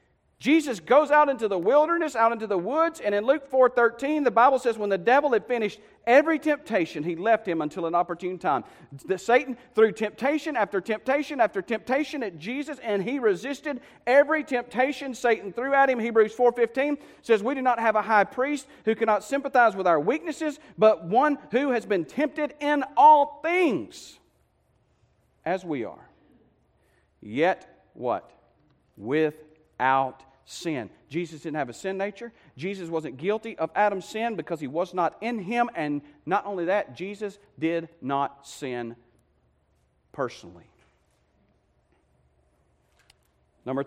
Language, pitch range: English, 150-245 Hz